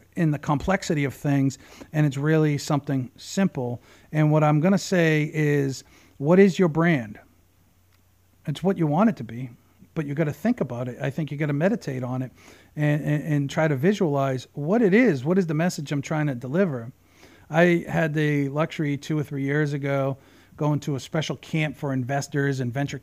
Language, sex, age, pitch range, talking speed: English, male, 40-59, 130-170 Hz, 205 wpm